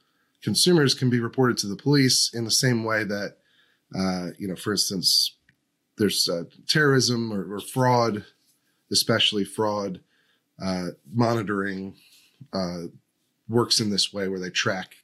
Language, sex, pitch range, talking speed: English, male, 95-120 Hz, 140 wpm